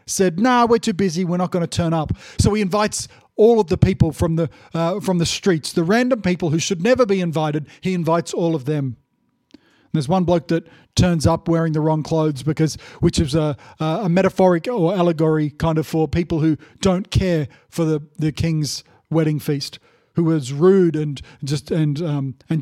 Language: English